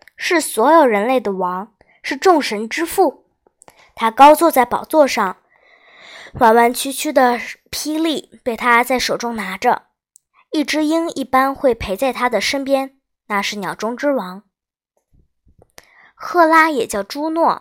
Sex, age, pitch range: male, 20-39, 220-320 Hz